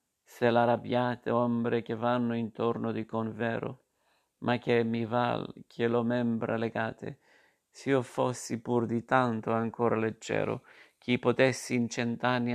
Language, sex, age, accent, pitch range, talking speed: Italian, male, 50-69, native, 115-120 Hz, 135 wpm